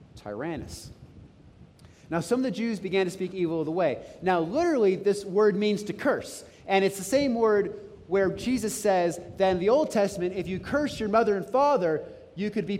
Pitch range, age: 185-245 Hz, 30-49